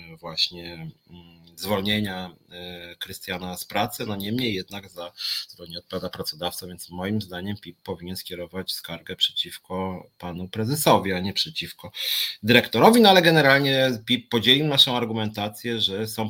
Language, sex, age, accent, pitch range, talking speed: Polish, male, 30-49, native, 90-105 Hz, 130 wpm